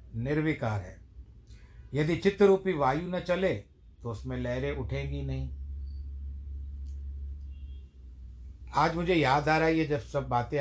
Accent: native